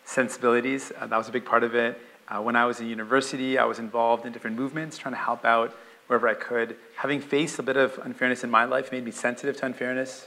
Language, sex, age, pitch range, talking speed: English, male, 30-49, 115-130 Hz, 245 wpm